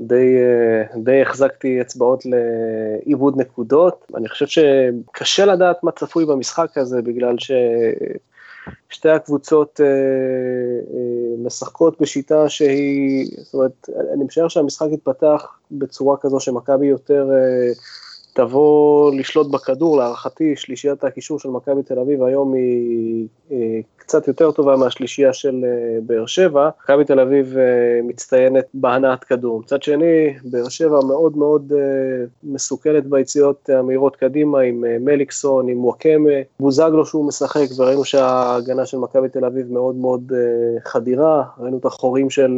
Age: 20-39